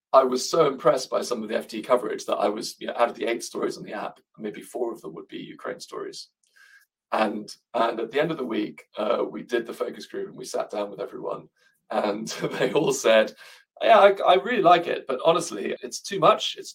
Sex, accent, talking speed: male, British, 240 wpm